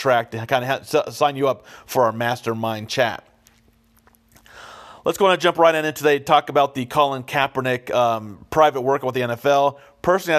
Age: 40-59